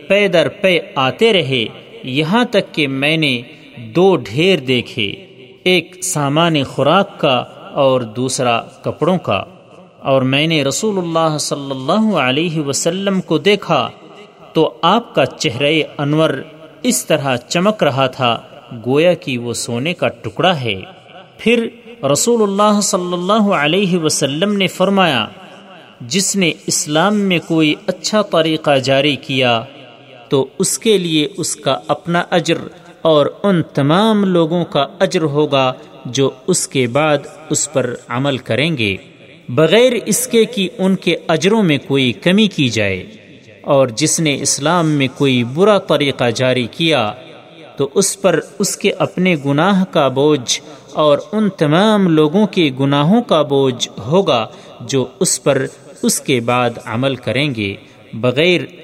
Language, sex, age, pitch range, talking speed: Urdu, male, 40-59, 135-185 Hz, 145 wpm